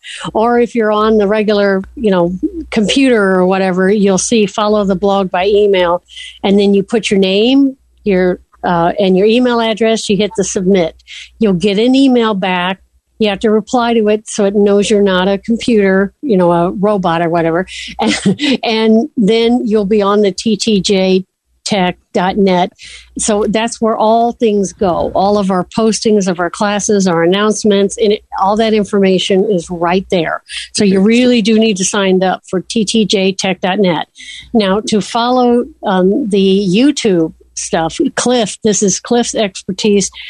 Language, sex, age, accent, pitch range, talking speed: English, female, 60-79, American, 190-225 Hz, 165 wpm